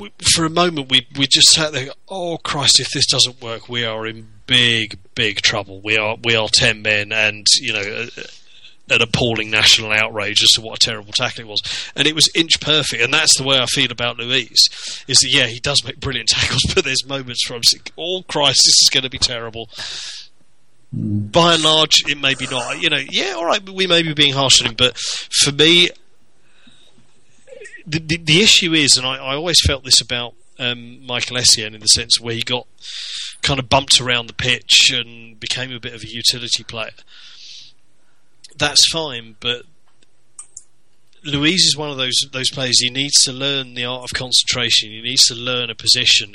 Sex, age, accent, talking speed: male, 30-49, British, 205 wpm